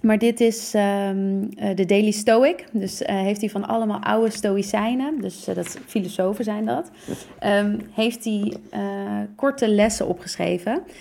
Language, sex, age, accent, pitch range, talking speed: Dutch, female, 30-49, Dutch, 190-235 Hz, 160 wpm